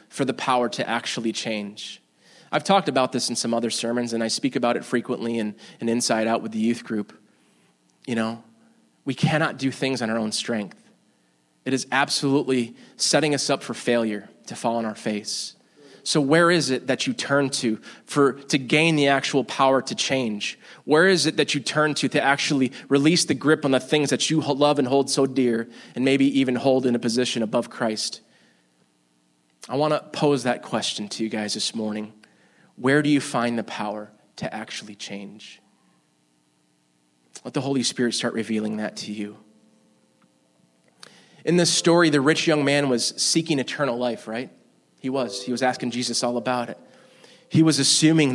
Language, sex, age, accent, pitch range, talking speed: English, male, 20-39, American, 110-140 Hz, 185 wpm